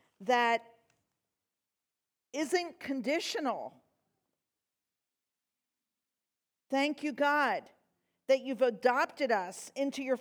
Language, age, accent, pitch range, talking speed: English, 50-69, American, 195-260 Hz, 70 wpm